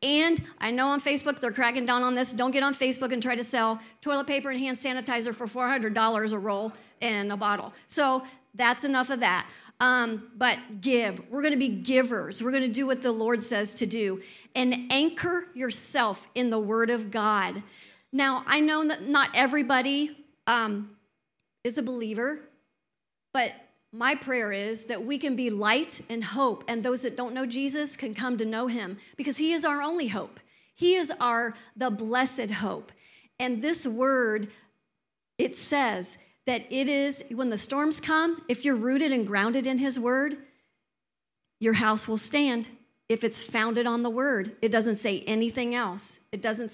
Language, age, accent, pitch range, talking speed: English, 40-59, American, 220-265 Hz, 180 wpm